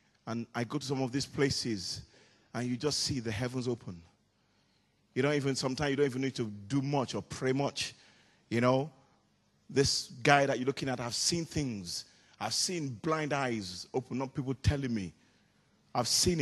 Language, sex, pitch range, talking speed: English, male, 125-180 Hz, 185 wpm